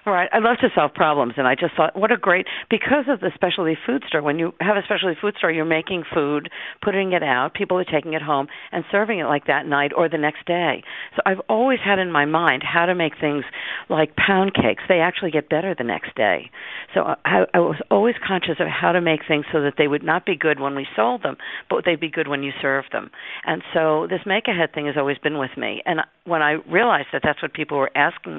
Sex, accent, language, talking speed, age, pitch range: female, American, English, 250 wpm, 50-69, 145-185 Hz